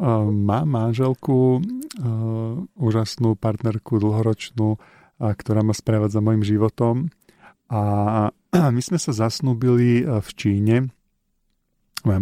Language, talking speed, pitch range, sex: Slovak, 95 wpm, 105-120 Hz, male